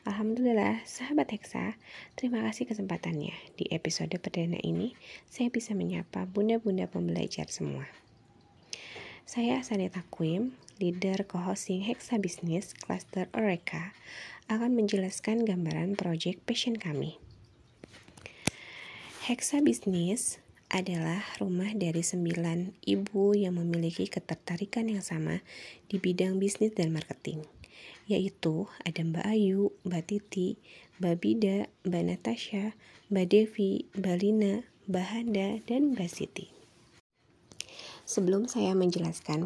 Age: 20-39